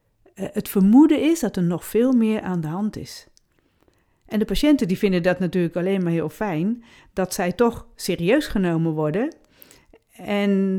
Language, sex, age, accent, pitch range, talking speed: Dutch, female, 40-59, Dutch, 175-215 Hz, 160 wpm